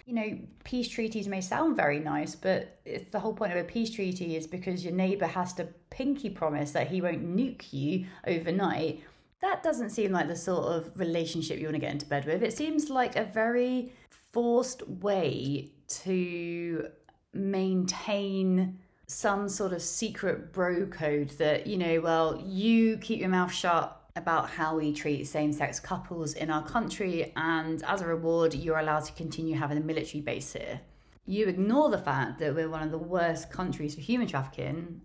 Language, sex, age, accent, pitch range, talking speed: English, female, 30-49, British, 160-205 Hz, 180 wpm